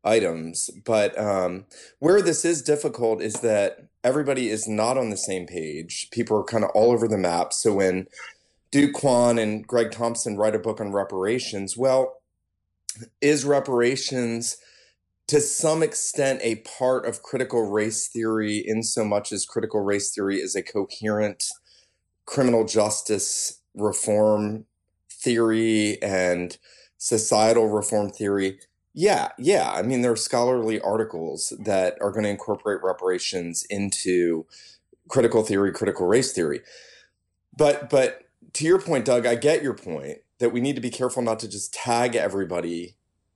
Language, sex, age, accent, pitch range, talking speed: English, male, 30-49, American, 100-120 Hz, 150 wpm